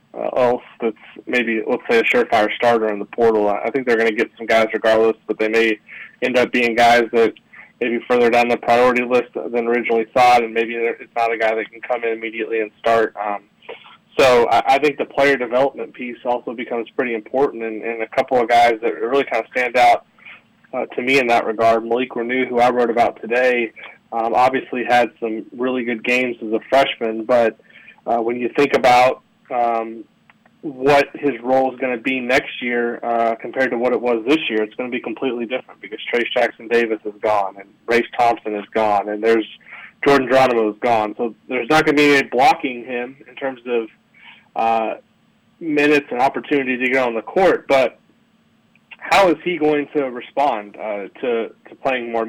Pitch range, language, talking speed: 115-125 Hz, English, 205 wpm